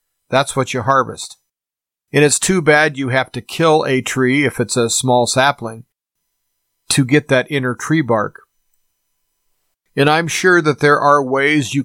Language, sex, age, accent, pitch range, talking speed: English, male, 40-59, American, 120-145 Hz, 165 wpm